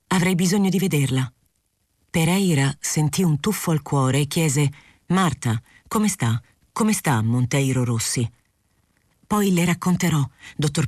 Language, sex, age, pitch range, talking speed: Italian, female, 40-59, 130-175 Hz, 125 wpm